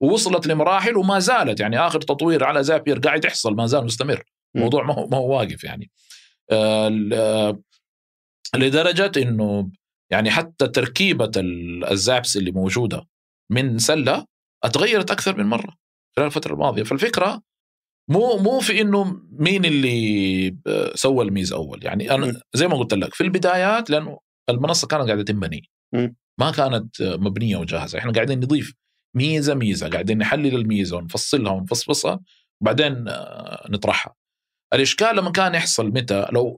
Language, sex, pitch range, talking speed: Arabic, male, 110-180 Hz, 140 wpm